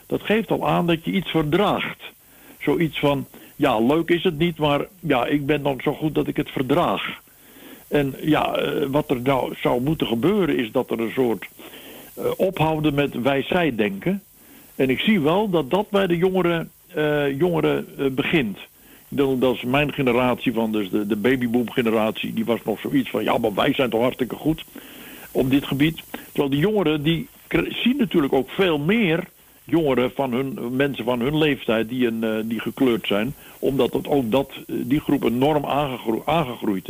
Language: Dutch